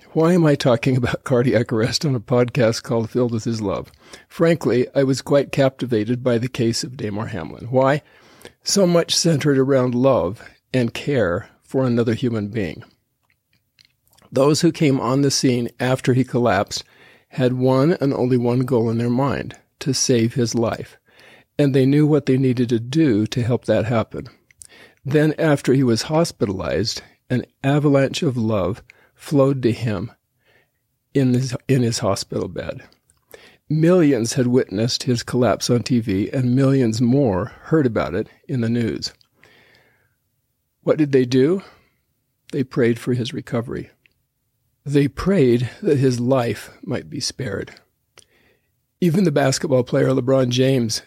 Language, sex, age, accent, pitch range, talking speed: English, male, 50-69, American, 120-140 Hz, 150 wpm